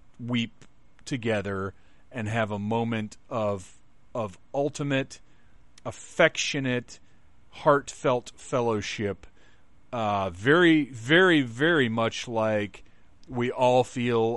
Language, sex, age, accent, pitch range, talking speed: English, male, 30-49, American, 100-125 Hz, 90 wpm